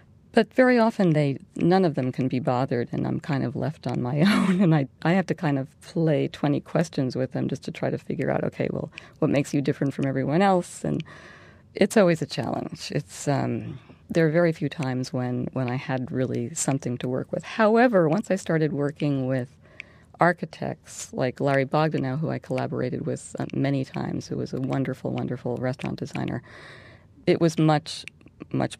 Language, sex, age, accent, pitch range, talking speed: English, female, 40-59, American, 130-165 Hz, 195 wpm